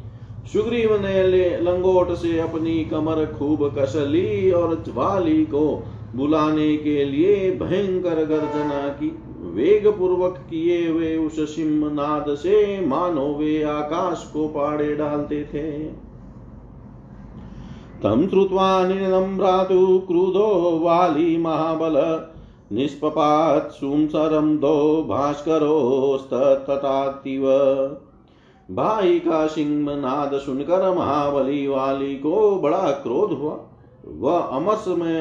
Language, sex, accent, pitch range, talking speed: Hindi, male, native, 140-175 Hz, 90 wpm